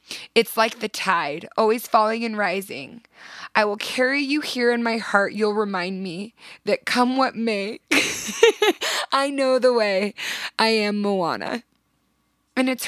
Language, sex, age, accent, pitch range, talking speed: English, female, 20-39, American, 180-225 Hz, 150 wpm